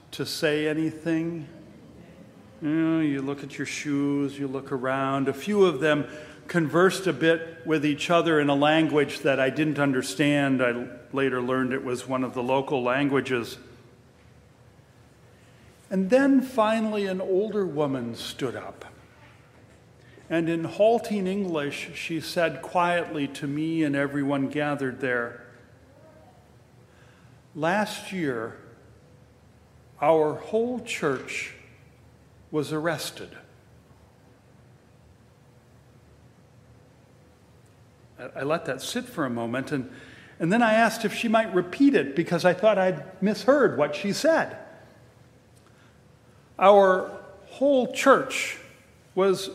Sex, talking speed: male, 115 wpm